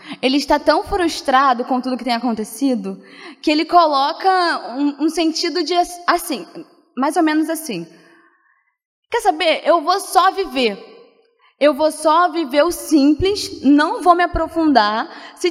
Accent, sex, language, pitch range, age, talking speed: Brazilian, female, Portuguese, 255-335 Hz, 20-39, 145 wpm